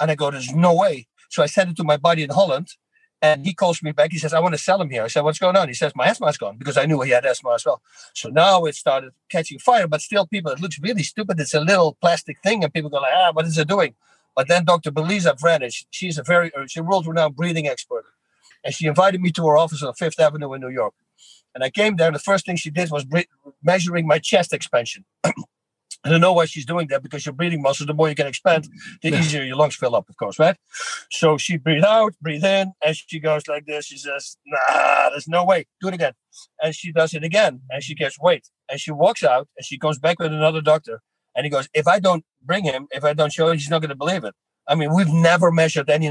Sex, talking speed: male, 265 wpm